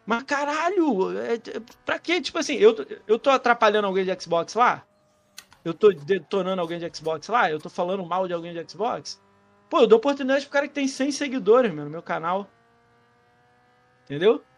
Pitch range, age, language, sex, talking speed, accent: 165-240 Hz, 20-39, Portuguese, male, 180 wpm, Brazilian